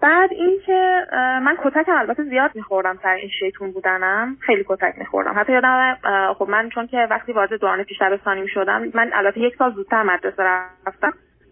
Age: 20-39